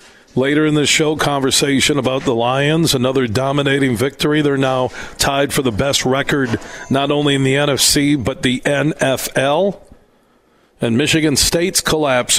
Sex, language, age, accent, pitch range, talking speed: male, English, 40-59, American, 130-145 Hz, 145 wpm